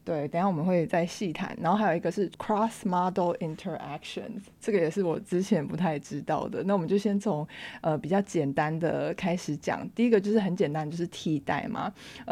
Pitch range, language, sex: 165-210 Hz, Chinese, female